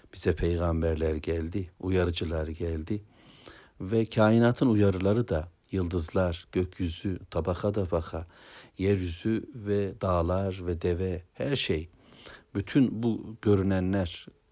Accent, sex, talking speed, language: native, male, 95 wpm, Turkish